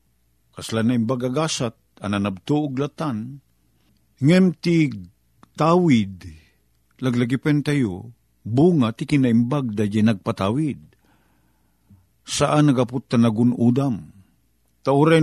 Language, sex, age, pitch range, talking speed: Filipino, male, 50-69, 80-130 Hz, 85 wpm